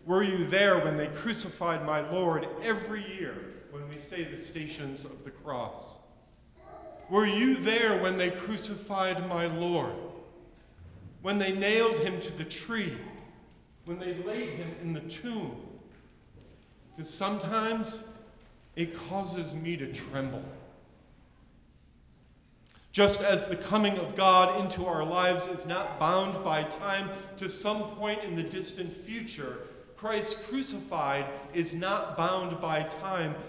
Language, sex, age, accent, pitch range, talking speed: English, male, 40-59, American, 160-195 Hz, 135 wpm